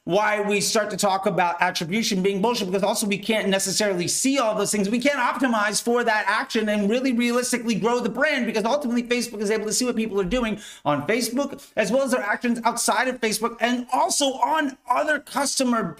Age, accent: 40-59, American